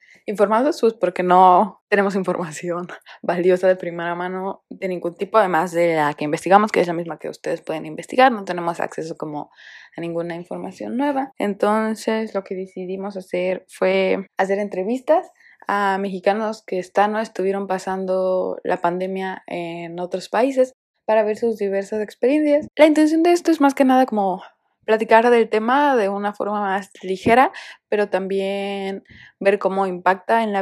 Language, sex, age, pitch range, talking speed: Spanish, female, 20-39, 185-230 Hz, 165 wpm